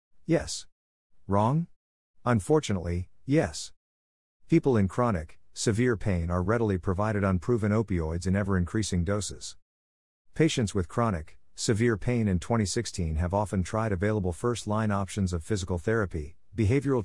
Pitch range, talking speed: 90-115 Hz, 120 wpm